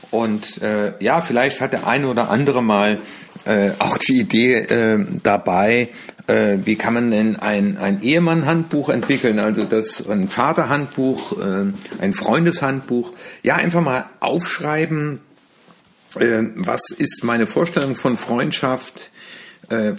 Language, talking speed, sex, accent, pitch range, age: German, 130 wpm, male, German, 110-160 Hz, 50-69